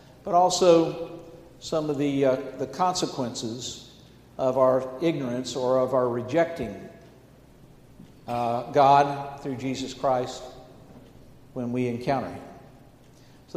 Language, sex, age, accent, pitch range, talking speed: English, male, 60-79, American, 135-190 Hz, 110 wpm